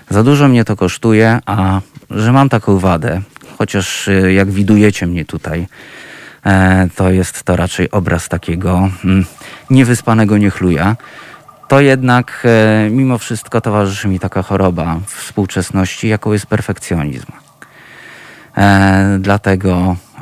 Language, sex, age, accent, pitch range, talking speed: Polish, male, 20-39, native, 90-110 Hz, 105 wpm